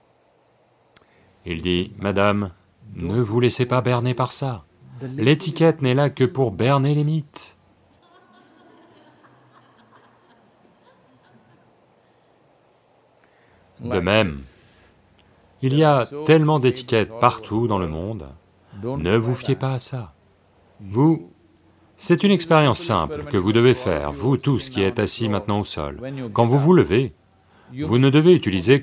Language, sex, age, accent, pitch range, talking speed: English, male, 40-59, French, 95-135 Hz, 125 wpm